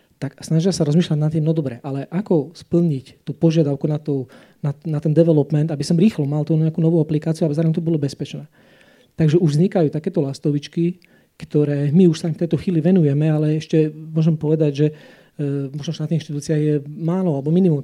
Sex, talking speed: male, 195 wpm